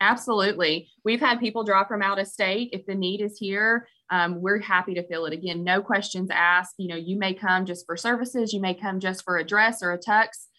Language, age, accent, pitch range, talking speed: English, 20-39, American, 165-190 Hz, 240 wpm